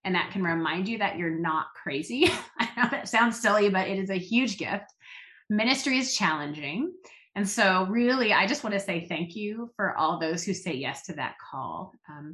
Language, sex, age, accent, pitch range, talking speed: English, female, 30-49, American, 175-225 Hz, 210 wpm